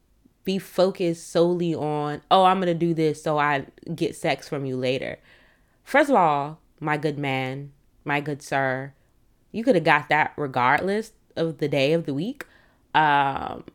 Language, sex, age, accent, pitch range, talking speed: English, female, 20-39, American, 145-175 Hz, 165 wpm